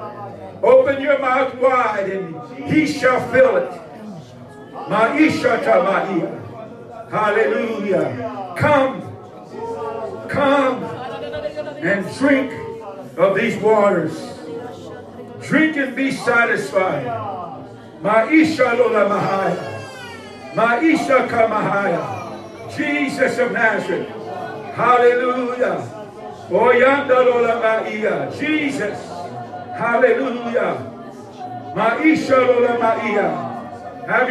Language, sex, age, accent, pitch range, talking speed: English, male, 60-79, American, 225-285 Hz, 65 wpm